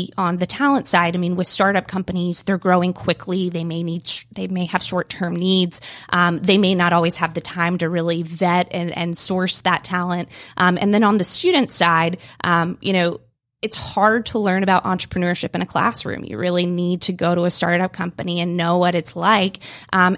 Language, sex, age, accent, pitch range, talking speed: English, female, 20-39, American, 175-200 Hz, 210 wpm